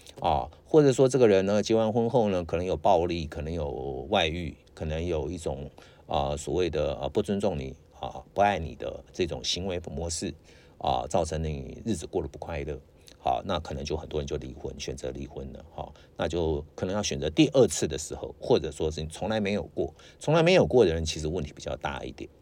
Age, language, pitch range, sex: 50-69, English, 75-90 Hz, male